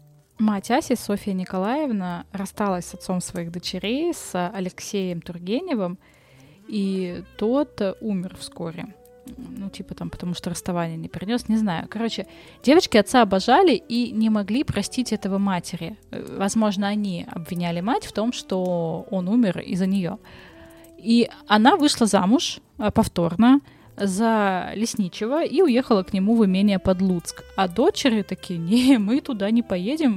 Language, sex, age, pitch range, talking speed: Russian, female, 20-39, 185-245 Hz, 135 wpm